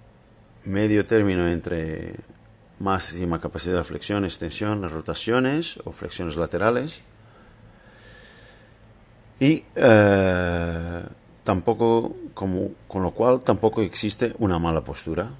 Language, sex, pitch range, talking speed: Spanish, male, 90-110 Hz, 95 wpm